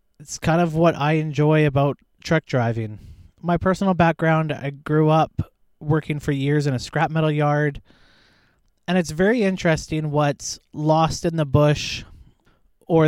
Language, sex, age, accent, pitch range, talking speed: English, male, 20-39, American, 140-170 Hz, 150 wpm